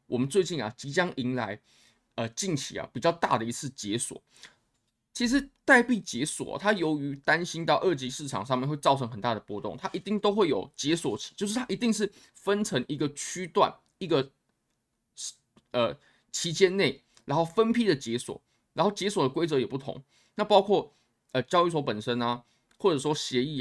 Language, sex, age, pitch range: Chinese, male, 20-39, 125-180 Hz